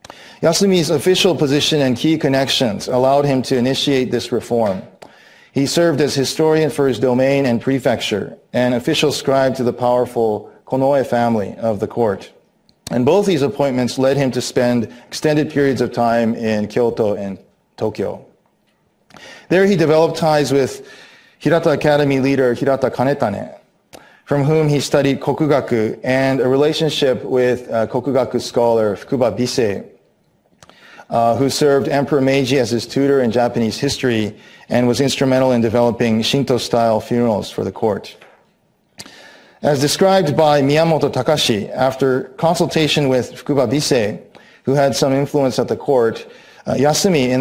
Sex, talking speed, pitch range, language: male, 145 wpm, 120-145 Hz, English